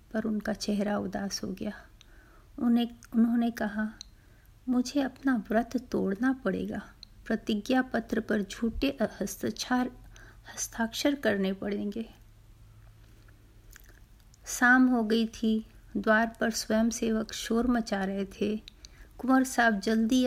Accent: native